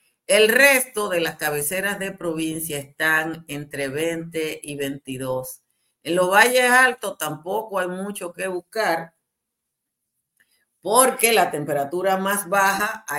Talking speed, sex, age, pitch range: 125 wpm, female, 50-69, 155-190 Hz